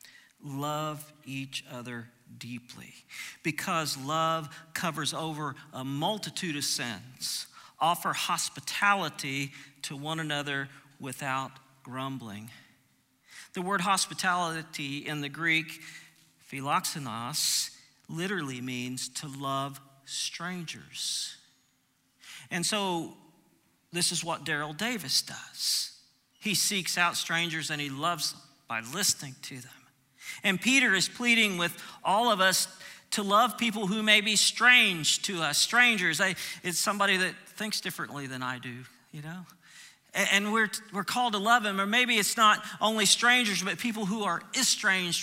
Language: English